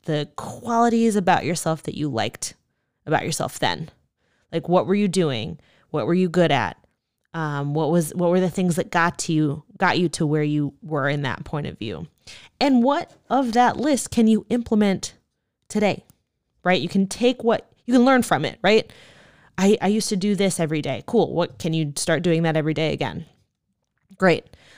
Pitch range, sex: 165-225 Hz, female